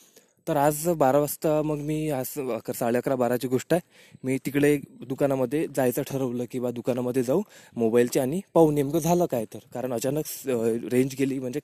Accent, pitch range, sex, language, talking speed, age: native, 120-150 Hz, male, Marathi, 180 wpm, 20-39